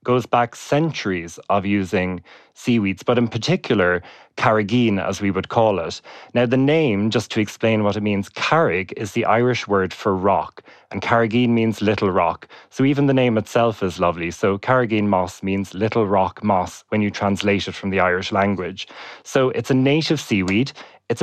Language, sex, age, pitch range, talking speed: English, male, 20-39, 100-125 Hz, 180 wpm